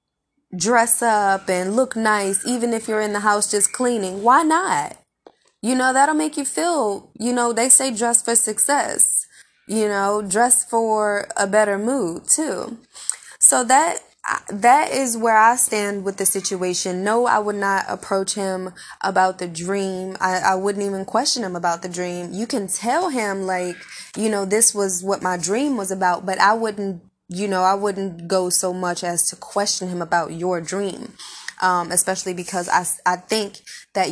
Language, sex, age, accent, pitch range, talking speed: English, female, 20-39, American, 180-215 Hz, 180 wpm